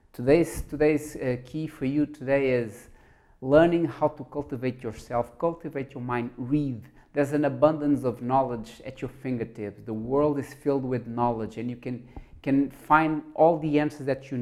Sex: male